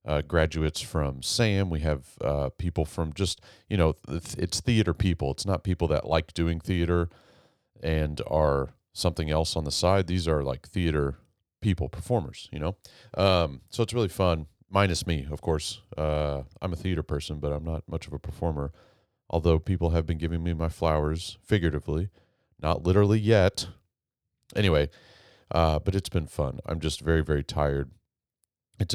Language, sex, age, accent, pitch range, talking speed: English, male, 40-59, American, 80-95 Hz, 170 wpm